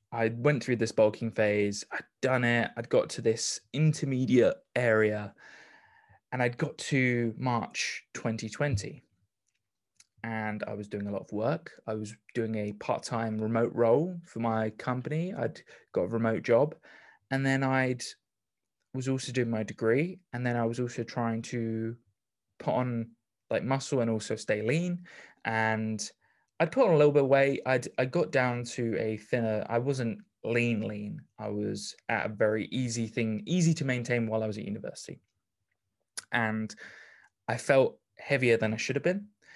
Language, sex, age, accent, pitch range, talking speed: English, male, 20-39, British, 110-130 Hz, 165 wpm